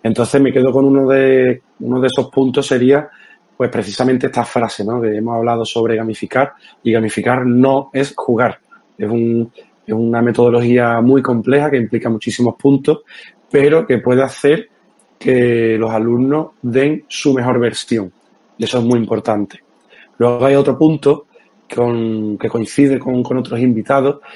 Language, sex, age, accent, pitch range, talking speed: Spanish, male, 30-49, Spanish, 115-135 Hz, 155 wpm